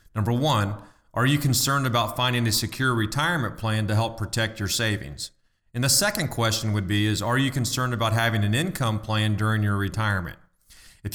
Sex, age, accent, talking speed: male, 40-59, American, 190 wpm